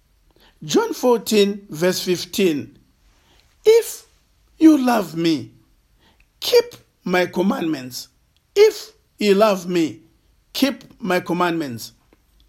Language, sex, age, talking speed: English, male, 50-69, 85 wpm